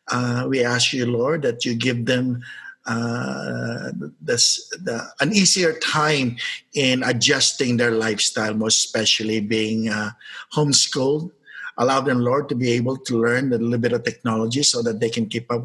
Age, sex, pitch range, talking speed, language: 50-69, male, 120-145 Hz, 155 wpm, English